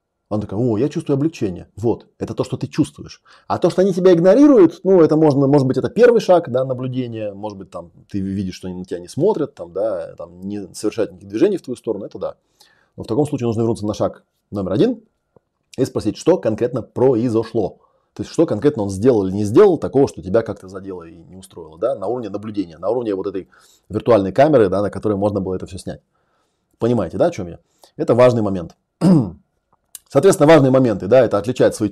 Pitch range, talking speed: 100-140 Hz, 220 wpm